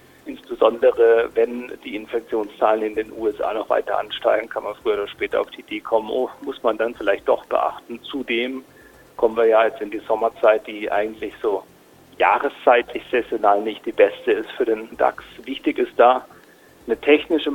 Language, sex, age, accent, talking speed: German, male, 40-59, German, 175 wpm